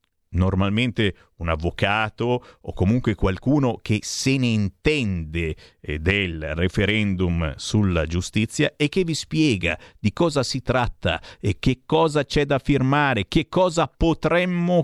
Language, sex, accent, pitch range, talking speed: Italian, male, native, 115-190 Hz, 125 wpm